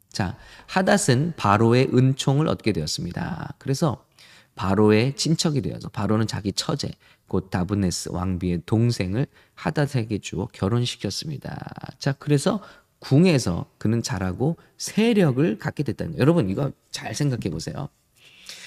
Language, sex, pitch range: English, male, 105-150 Hz